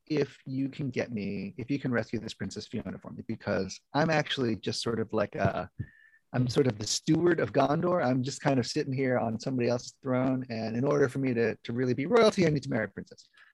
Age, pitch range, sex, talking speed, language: 40-59, 120-150 Hz, male, 240 wpm, English